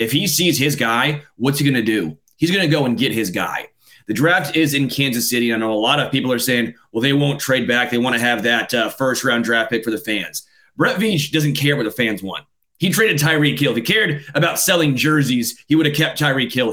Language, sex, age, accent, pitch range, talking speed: English, male, 30-49, American, 120-145 Hz, 260 wpm